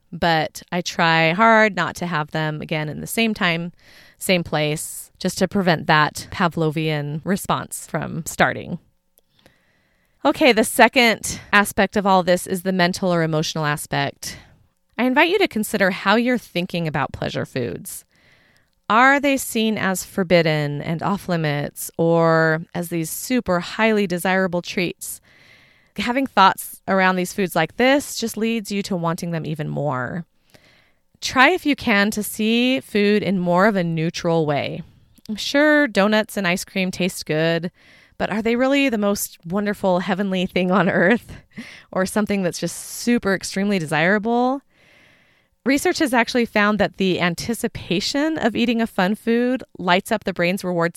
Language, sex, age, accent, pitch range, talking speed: English, female, 30-49, American, 170-225 Hz, 155 wpm